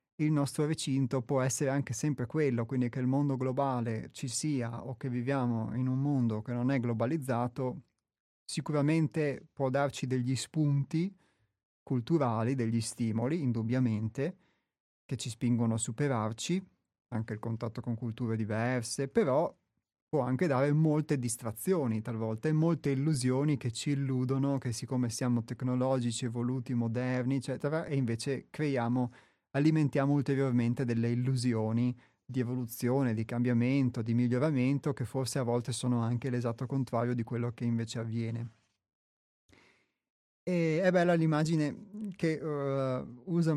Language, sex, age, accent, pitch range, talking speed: Italian, male, 30-49, native, 120-145 Hz, 130 wpm